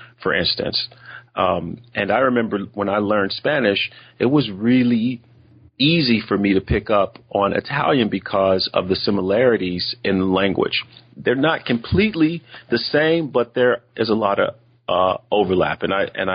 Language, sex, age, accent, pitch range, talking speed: English, male, 40-59, American, 90-120 Hz, 160 wpm